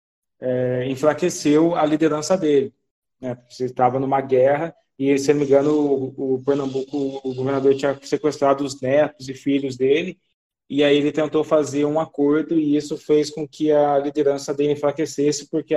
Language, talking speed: Portuguese, 170 wpm